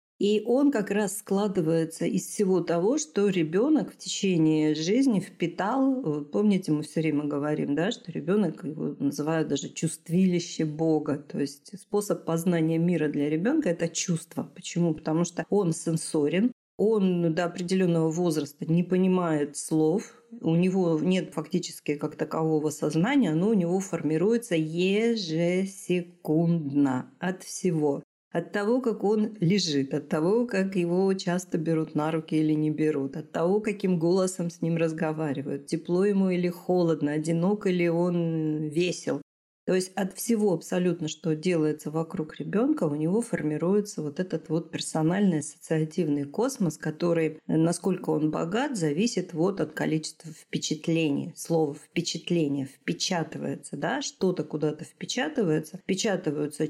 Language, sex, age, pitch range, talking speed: Russian, female, 40-59, 155-190 Hz, 135 wpm